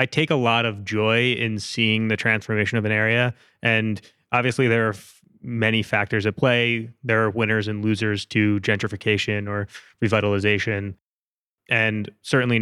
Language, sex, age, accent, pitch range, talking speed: English, male, 20-39, American, 105-120 Hz, 150 wpm